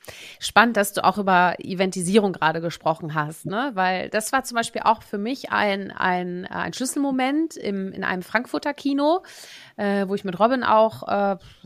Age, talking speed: 30-49, 175 wpm